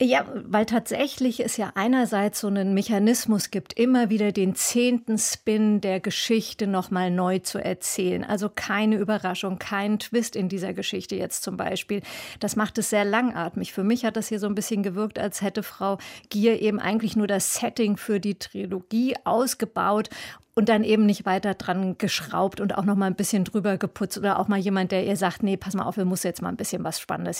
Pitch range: 195-225 Hz